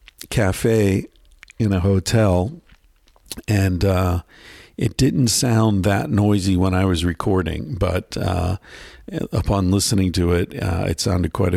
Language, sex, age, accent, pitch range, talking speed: English, male, 50-69, American, 95-110 Hz, 130 wpm